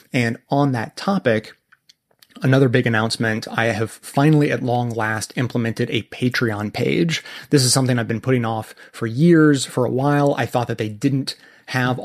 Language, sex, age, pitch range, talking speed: English, male, 30-49, 110-135 Hz, 175 wpm